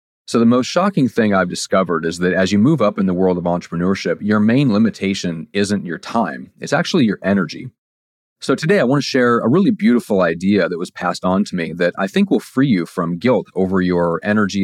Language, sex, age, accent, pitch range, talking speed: English, male, 30-49, American, 90-115 Hz, 225 wpm